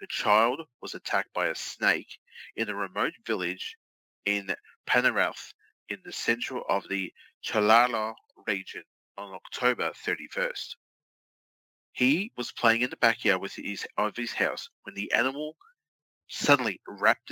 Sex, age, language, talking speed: male, 30-49, English, 135 wpm